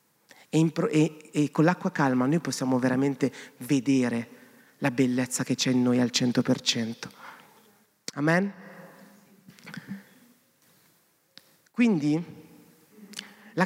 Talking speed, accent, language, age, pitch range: 95 wpm, native, Italian, 30-49, 135-175 Hz